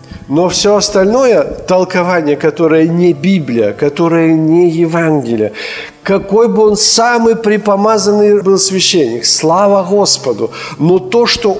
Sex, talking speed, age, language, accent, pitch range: male, 115 wpm, 50-69, Ukrainian, native, 115-180 Hz